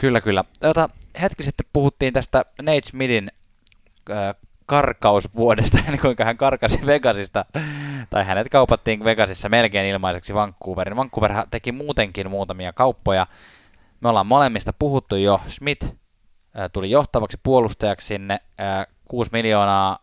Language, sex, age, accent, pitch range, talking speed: Finnish, male, 10-29, native, 95-120 Hz, 115 wpm